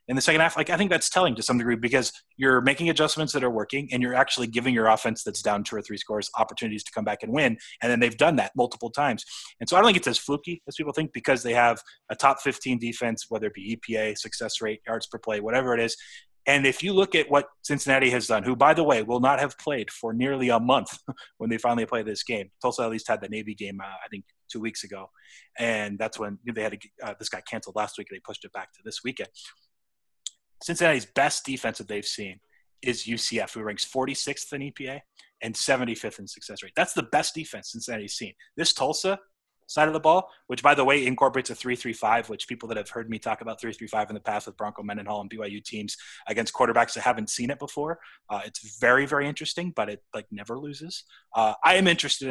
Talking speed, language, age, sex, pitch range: 240 wpm, English, 20-39, male, 110-140 Hz